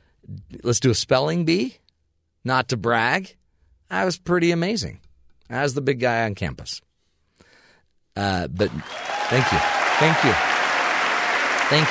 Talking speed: 125 wpm